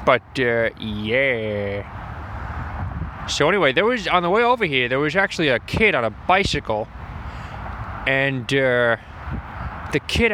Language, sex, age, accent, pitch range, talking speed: English, male, 20-39, American, 115-190 Hz, 140 wpm